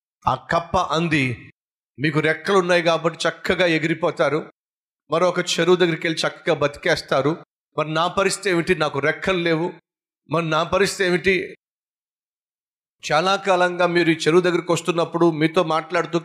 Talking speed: 135 wpm